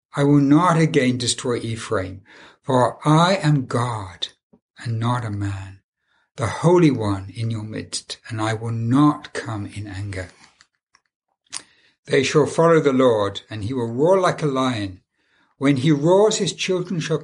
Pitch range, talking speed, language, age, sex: 120-165 Hz, 155 wpm, English, 60-79, male